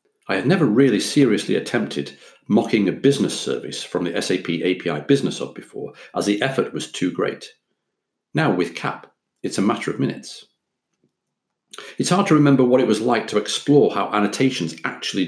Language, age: English, 50-69